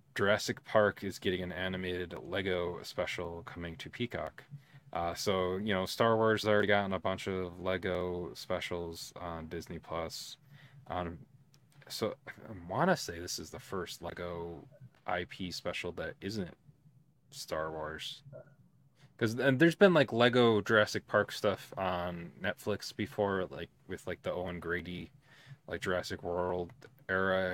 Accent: American